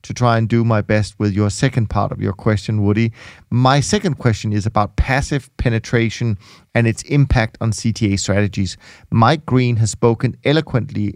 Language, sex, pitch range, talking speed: English, male, 105-125 Hz, 170 wpm